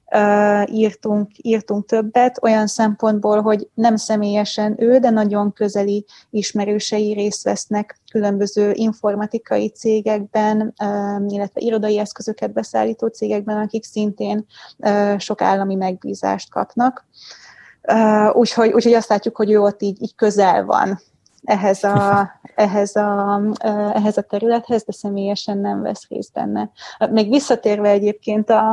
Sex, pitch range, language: female, 210-225 Hz, Hungarian